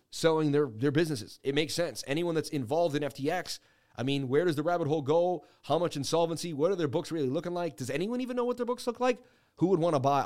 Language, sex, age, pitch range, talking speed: English, male, 30-49, 120-160 Hz, 255 wpm